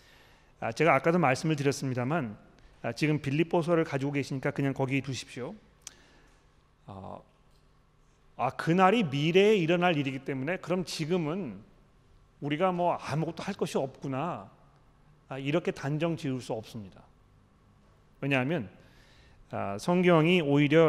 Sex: male